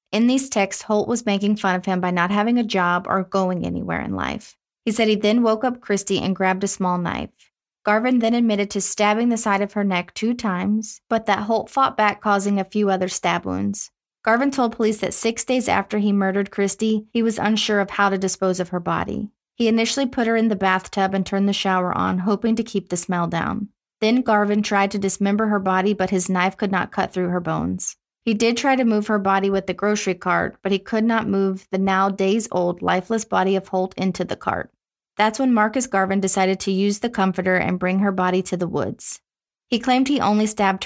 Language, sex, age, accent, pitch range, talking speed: English, female, 30-49, American, 185-220 Hz, 230 wpm